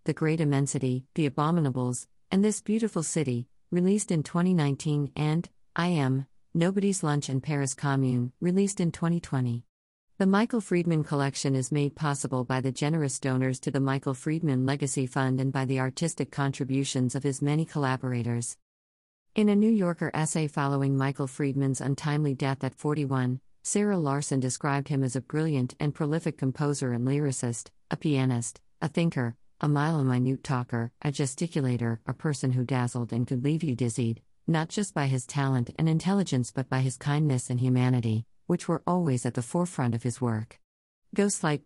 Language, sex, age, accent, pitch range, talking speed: English, female, 50-69, American, 130-160 Hz, 165 wpm